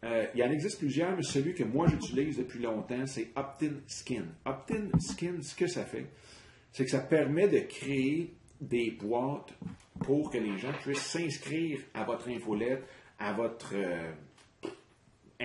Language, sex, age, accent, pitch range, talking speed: French, male, 40-59, Canadian, 110-140 Hz, 165 wpm